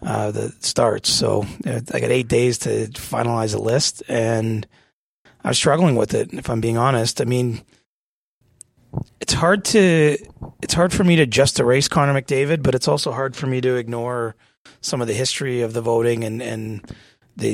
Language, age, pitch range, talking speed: English, 30-49, 115-130 Hz, 190 wpm